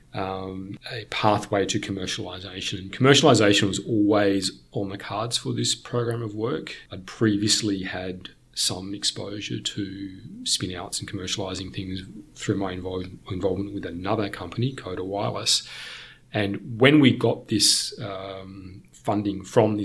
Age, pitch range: 30-49, 95-110 Hz